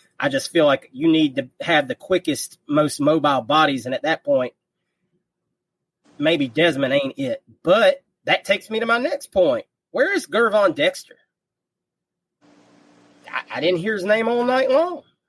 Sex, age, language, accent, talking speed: male, 30-49, English, American, 165 wpm